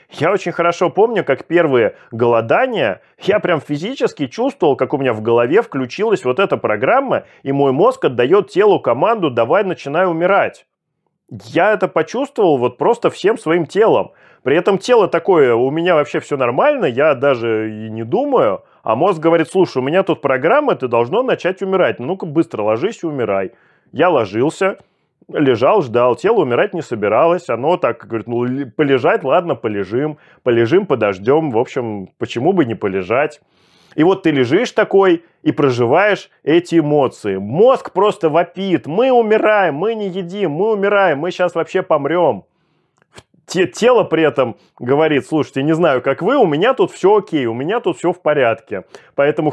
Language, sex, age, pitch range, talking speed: Russian, male, 30-49, 130-190 Hz, 165 wpm